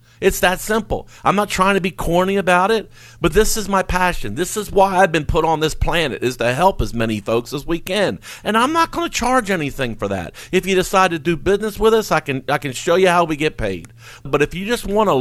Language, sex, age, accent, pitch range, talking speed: English, male, 50-69, American, 135-185 Hz, 265 wpm